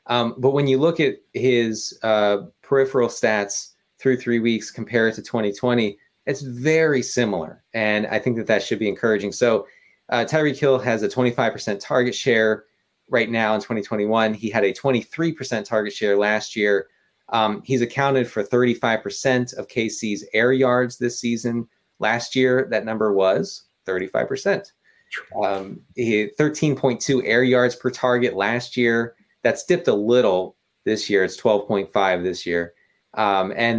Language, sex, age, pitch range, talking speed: English, male, 30-49, 105-130 Hz, 155 wpm